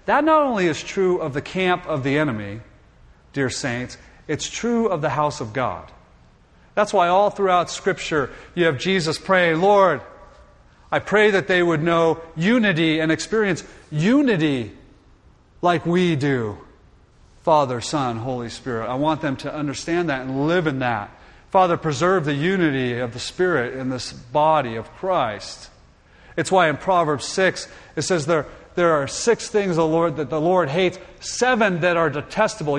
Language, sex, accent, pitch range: English, male, American, 125-175 Hz